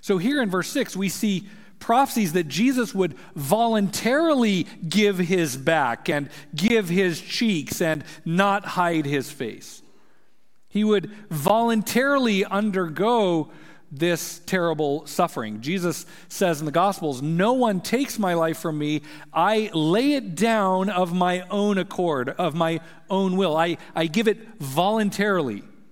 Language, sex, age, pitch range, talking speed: English, male, 50-69, 150-200 Hz, 140 wpm